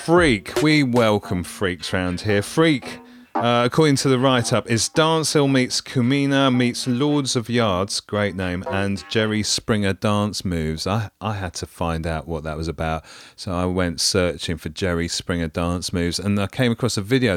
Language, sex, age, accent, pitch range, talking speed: English, male, 30-49, British, 85-115 Hz, 185 wpm